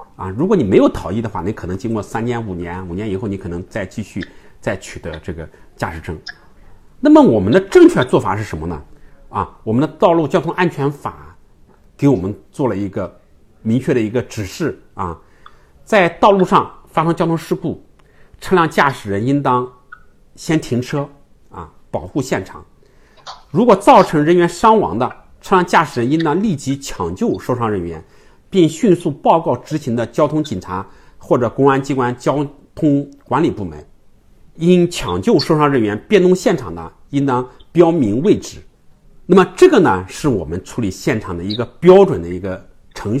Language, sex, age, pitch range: Chinese, male, 50-69, 100-155 Hz